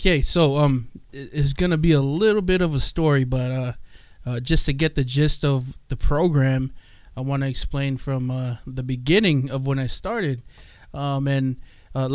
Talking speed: 195 wpm